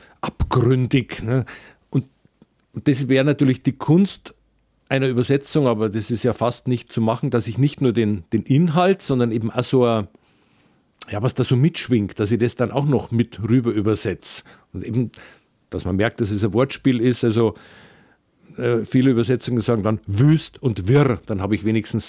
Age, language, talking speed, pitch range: 50-69, German, 180 wpm, 110-135 Hz